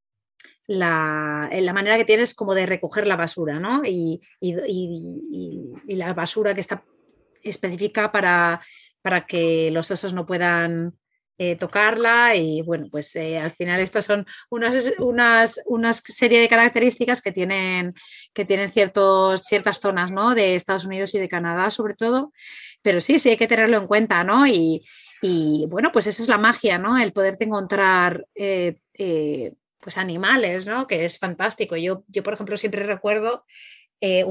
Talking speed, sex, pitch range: 170 wpm, female, 180-225 Hz